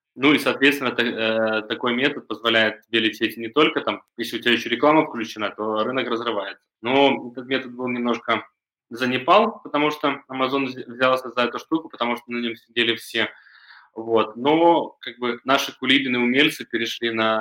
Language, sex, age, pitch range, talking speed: Russian, male, 20-39, 110-125 Hz, 170 wpm